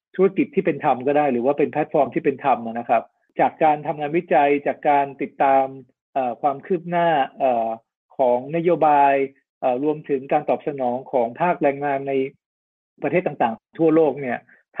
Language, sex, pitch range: Thai, male, 135-165 Hz